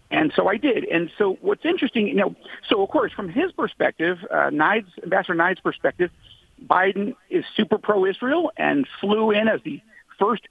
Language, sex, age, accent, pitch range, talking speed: English, male, 50-69, American, 170-245 Hz, 185 wpm